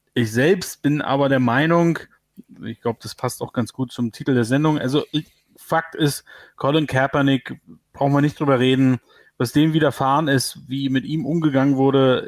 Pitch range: 130-160 Hz